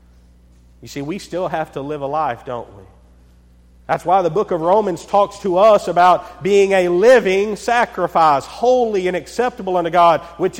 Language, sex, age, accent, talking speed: English, male, 40-59, American, 175 wpm